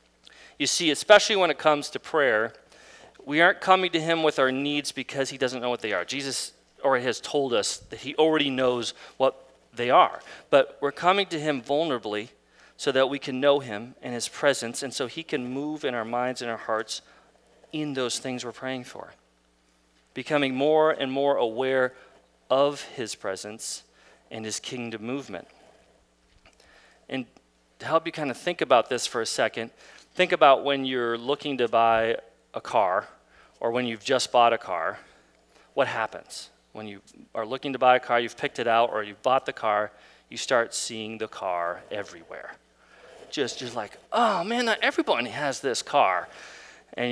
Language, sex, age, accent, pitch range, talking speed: English, male, 40-59, American, 115-150 Hz, 180 wpm